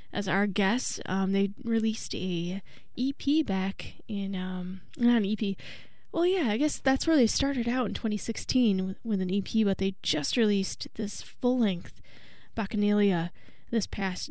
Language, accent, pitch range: English, American, 190-225 Hz